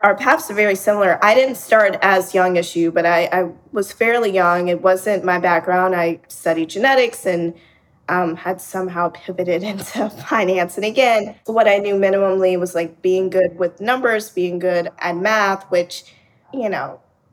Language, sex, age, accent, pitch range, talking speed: English, female, 20-39, American, 175-200 Hz, 175 wpm